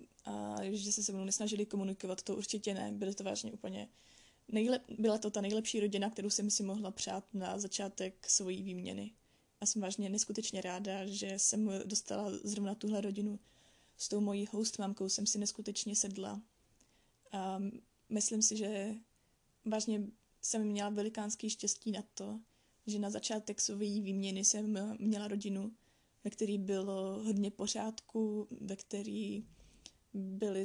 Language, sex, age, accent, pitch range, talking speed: Czech, female, 20-39, native, 195-215 Hz, 145 wpm